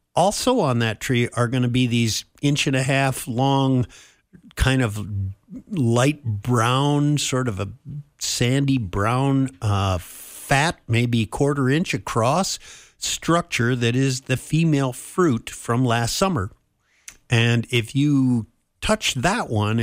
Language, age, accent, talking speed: English, 50-69, American, 135 wpm